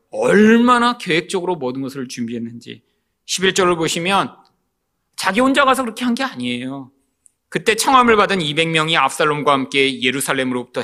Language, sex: Korean, male